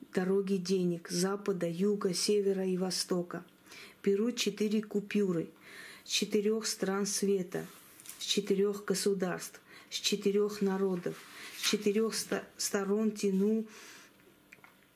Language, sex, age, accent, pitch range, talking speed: Russian, female, 40-59, native, 195-210 Hz, 95 wpm